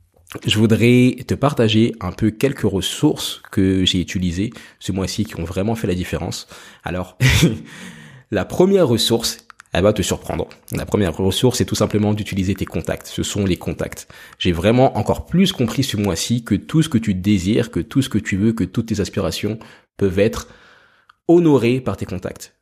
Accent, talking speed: French, 185 wpm